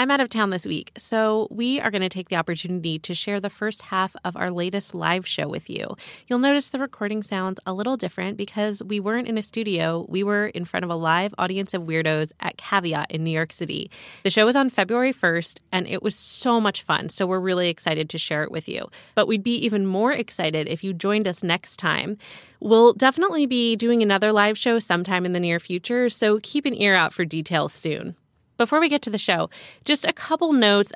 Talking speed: 230 wpm